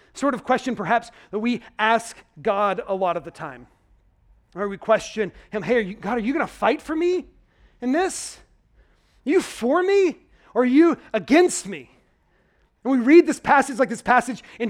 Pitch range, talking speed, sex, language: 195-255 Hz, 195 wpm, male, English